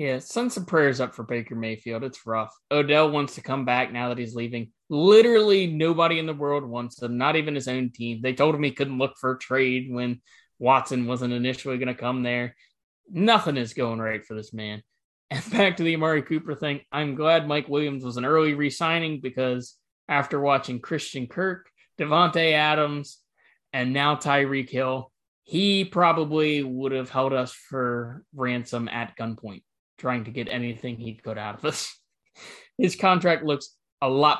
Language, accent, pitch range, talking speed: English, American, 125-155 Hz, 180 wpm